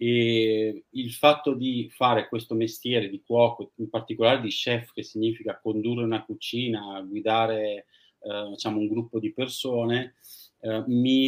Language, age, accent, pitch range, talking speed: Italian, 30-49, native, 110-130 Hz, 145 wpm